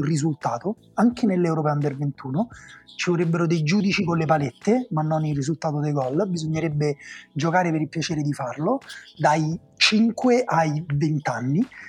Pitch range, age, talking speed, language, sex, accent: 145-185 Hz, 30-49, 150 wpm, Italian, male, native